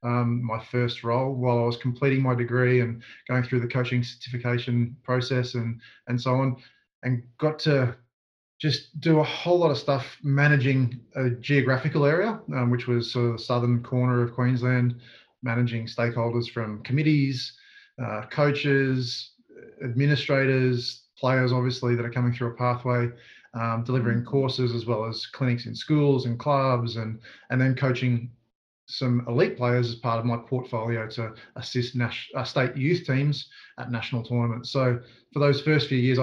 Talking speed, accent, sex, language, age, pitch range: 160 wpm, Australian, male, English, 20-39, 120-135 Hz